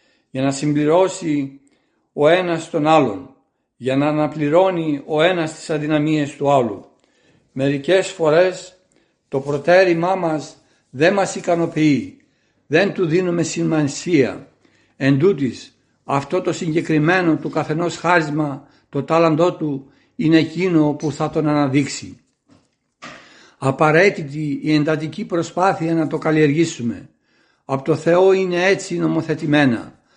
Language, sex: Greek, male